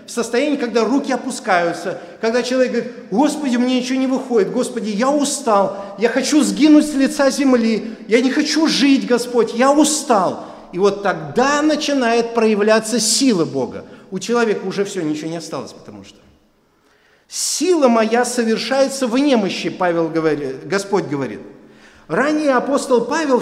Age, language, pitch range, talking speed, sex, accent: 50-69, Russian, 195-255 Hz, 145 wpm, male, native